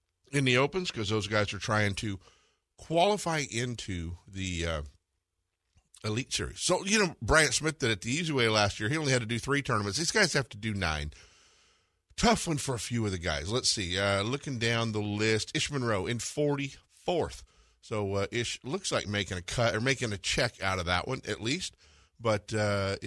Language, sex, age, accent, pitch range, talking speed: English, male, 50-69, American, 95-135 Hz, 205 wpm